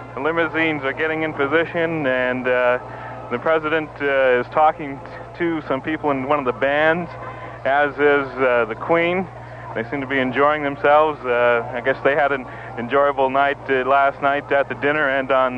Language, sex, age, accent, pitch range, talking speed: English, male, 40-59, American, 130-150 Hz, 190 wpm